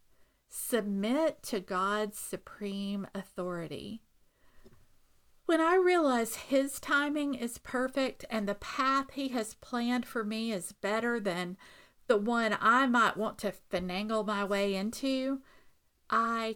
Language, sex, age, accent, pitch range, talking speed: English, female, 40-59, American, 200-260 Hz, 125 wpm